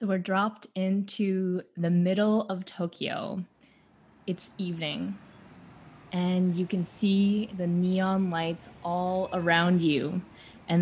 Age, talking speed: 20-39, 115 wpm